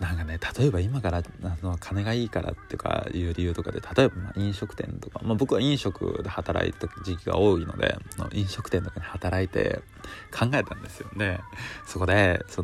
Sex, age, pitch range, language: male, 20-39, 90-110 Hz, Japanese